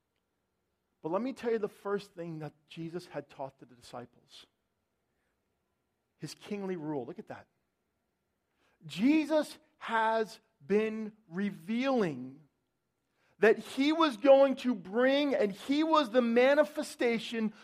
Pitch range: 180-250 Hz